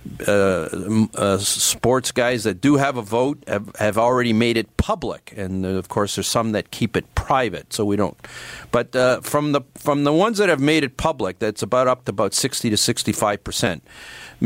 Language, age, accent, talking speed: English, 50-69, American, 195 wpm